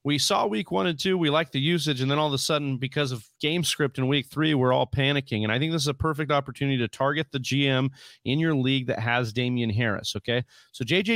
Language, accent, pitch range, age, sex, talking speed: English, American, 125-160 Hz, 40-59, male, 260 wpm